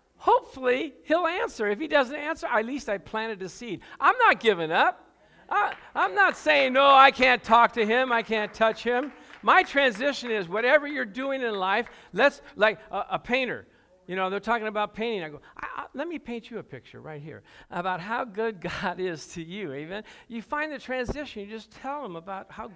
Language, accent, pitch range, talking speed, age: English, American, 145-240 Hz, 210 wpm, 50-69